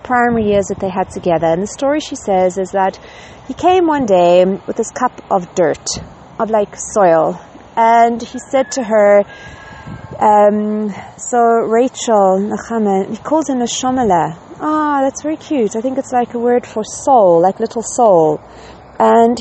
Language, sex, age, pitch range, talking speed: English, female, 40-59, 205-275 Hz, 165 wpm